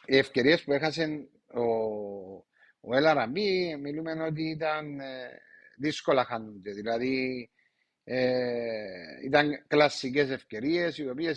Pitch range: 135-170 Hz